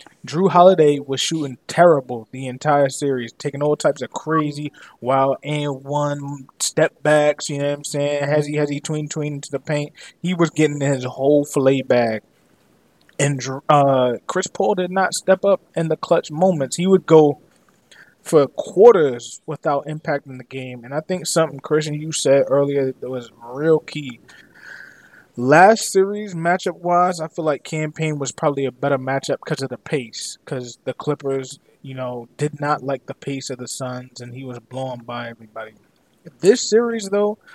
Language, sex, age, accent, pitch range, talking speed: English, male, 20-39, American, 135-160 Hz, 175 wpm